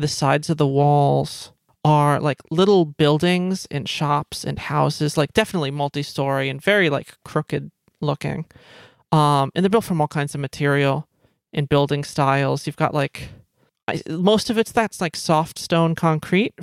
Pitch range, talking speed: 145-175 Hz, 160 wpm